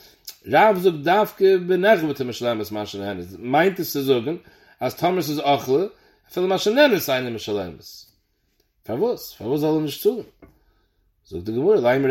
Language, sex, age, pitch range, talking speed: English, male, 40-59, 125-180 Hz, 60 wpm